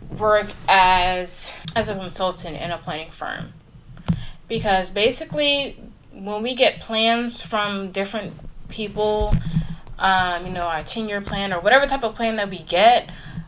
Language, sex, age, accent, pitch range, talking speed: English, female, 10-29, American, 185-235 Hz, 140 wpm